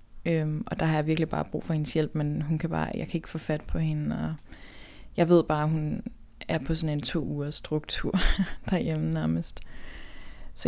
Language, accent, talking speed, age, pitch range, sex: Danish, native, 215 wpm, 20-39, 145-175 Hz, female